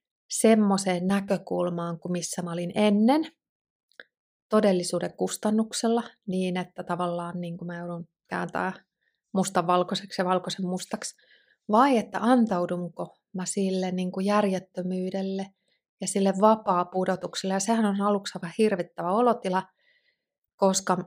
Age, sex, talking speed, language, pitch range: 30-49, female, 110 wpm, Finnish, 180-205 Hz